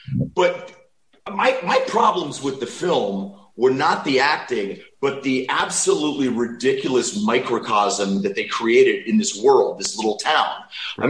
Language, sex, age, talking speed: English, male, 30-49, 140 wpm